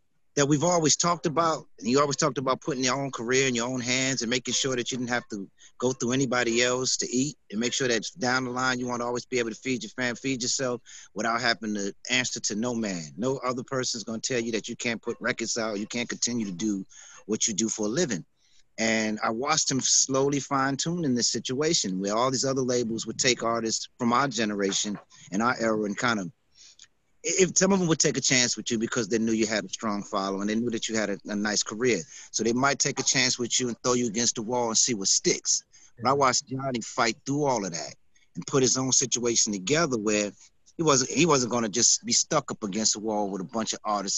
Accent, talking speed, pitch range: American, 250 wpm, 110-130 Hz